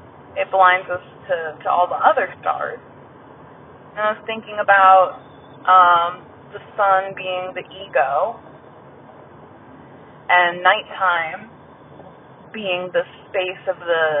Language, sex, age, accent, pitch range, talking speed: English, female, 20-39, American, 170-190 Hz, 115 wpm